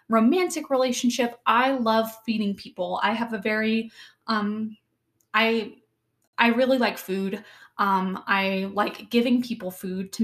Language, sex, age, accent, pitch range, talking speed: English, female, 10-29, American, 205-245 Hz, 135 wpm